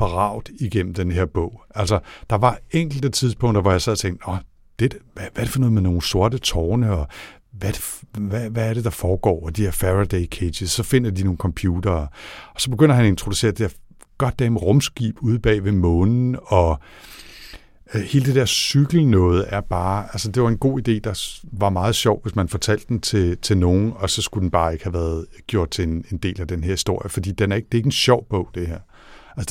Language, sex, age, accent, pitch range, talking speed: Danish, male, 60-79, native, 90-110 Hz, 220 wpm